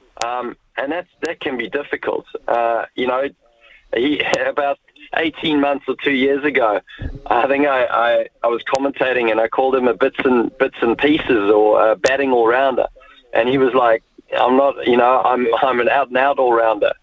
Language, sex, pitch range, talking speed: English, male, 120-150 Hz, 185 wpm